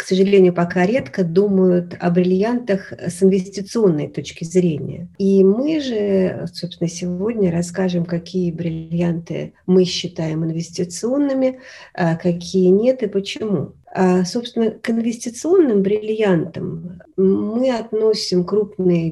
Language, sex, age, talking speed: Russian, female, 40-59, 110 wpm